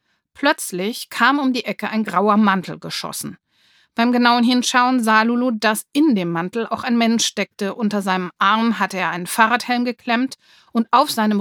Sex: female